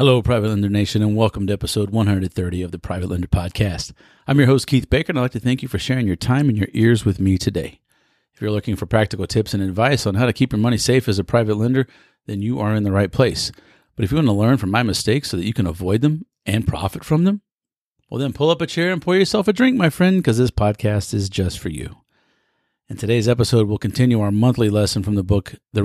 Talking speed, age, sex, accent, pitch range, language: 260 wpm, 40-59, male, American, 100-130 Hz, English